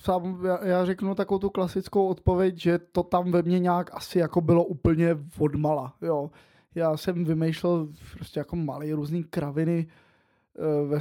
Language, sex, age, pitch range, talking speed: Czech, male, 20-39, 165-185 Hz, 145 wpm